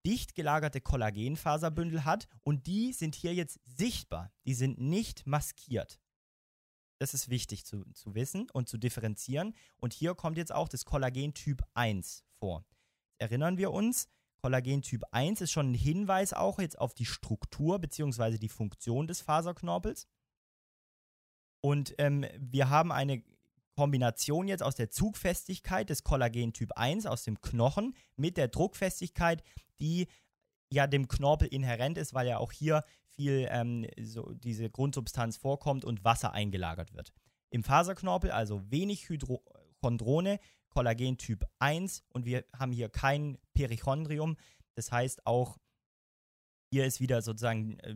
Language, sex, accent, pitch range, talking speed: German, male, German, 115-150 Hz, 140 wpm